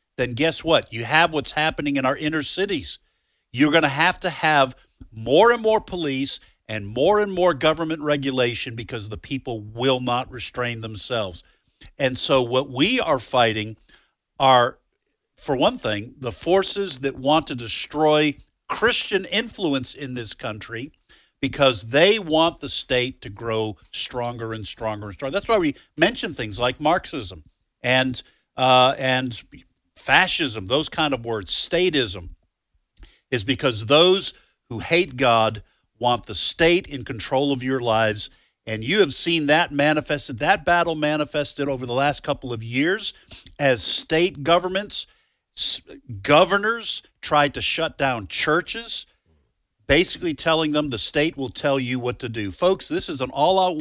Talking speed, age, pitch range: 155 wpm, 50-69, 115-155 Hz